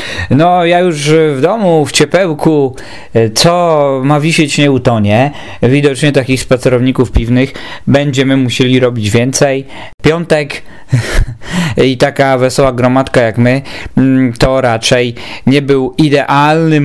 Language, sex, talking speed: Polish, male, 115 wpm